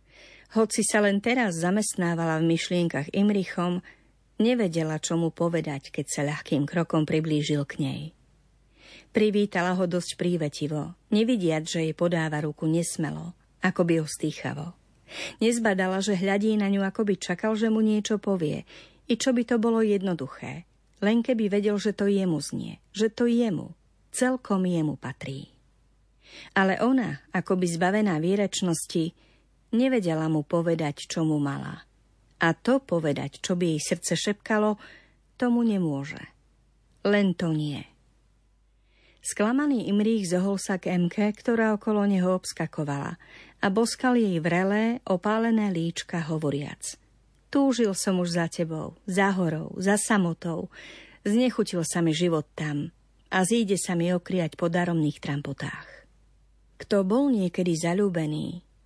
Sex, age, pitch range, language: female, 50-69, 160-210 Hz, Slovak